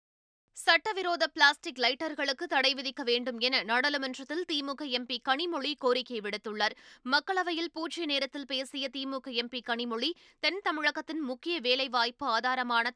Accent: native